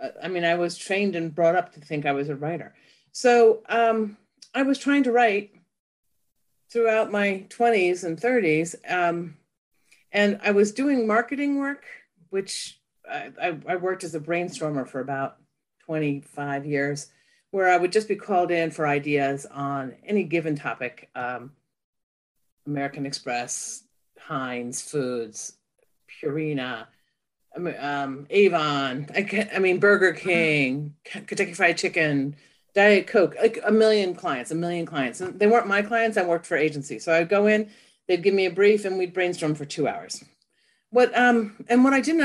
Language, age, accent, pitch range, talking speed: English, 40-59, American, 150-220 Hz, 160 wpm